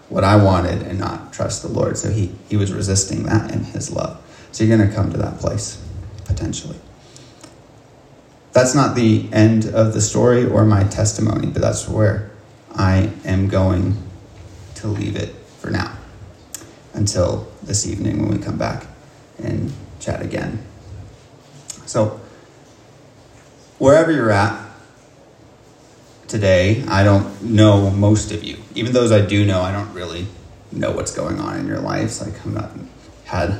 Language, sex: English, male